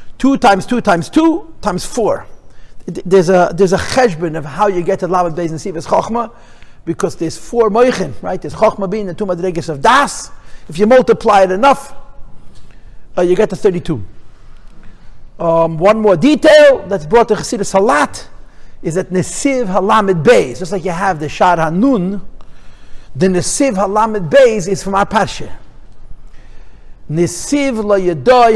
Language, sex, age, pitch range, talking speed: English, male, 50-69, 170-225 Hz, 160 wpm